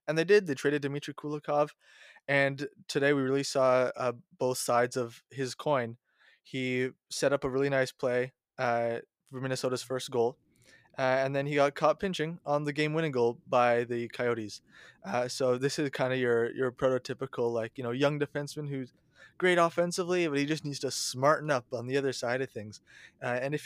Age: 20-39